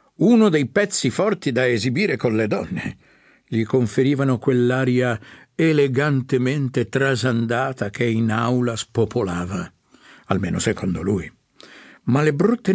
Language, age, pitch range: Italian, 60-79, 110-145 Hz